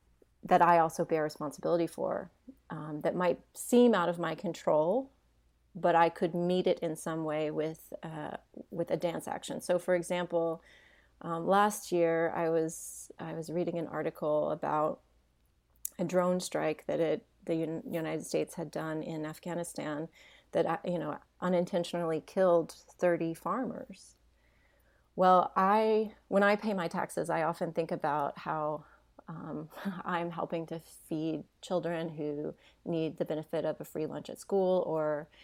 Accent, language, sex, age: American, English, female, 30-49